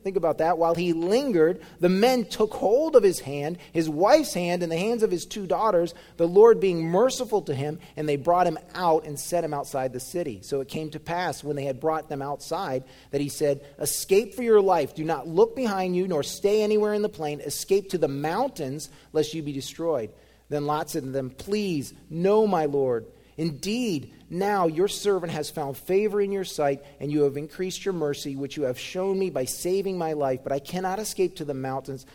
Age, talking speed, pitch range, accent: 30-49, 220 wpm, 140-185 Hz, American